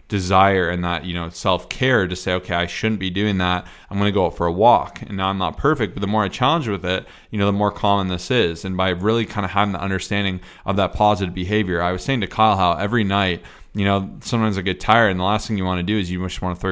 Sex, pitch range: male, 95-110 Hz